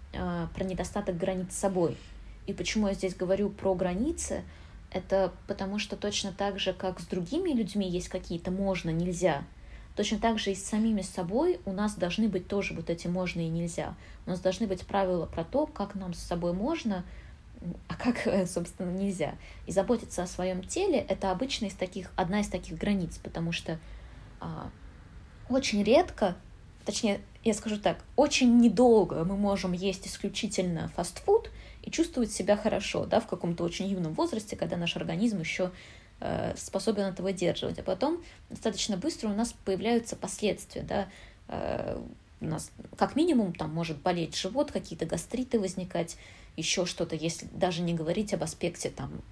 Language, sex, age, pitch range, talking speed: Russian, female, 20-39, 180-215 Hz, 175 wpm